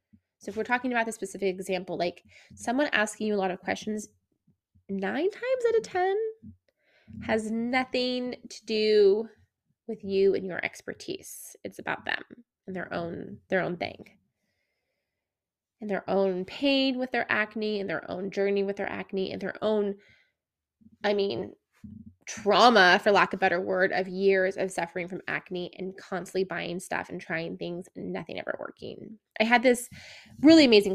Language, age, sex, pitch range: English, 20-39, female, 190-245 Hz